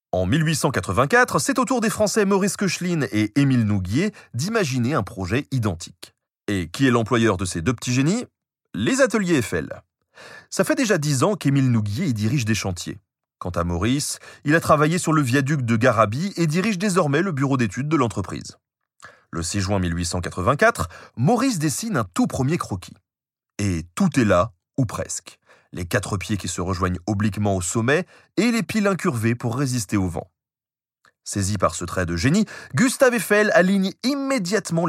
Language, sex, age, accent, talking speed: French, male, 30-49, French, 175 wpm